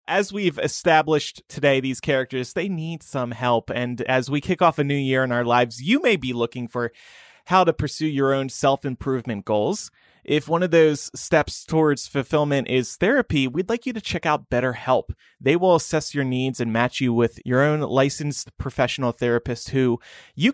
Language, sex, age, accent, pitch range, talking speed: English, male, 30-49, American, 125-155 Hz, 190 wpm